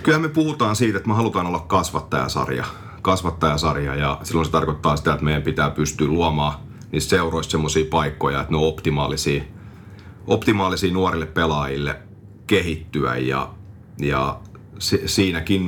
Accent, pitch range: native, 75-95 Hz